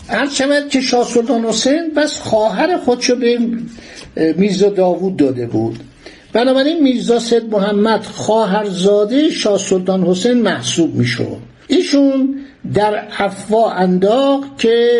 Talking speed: 100 wpm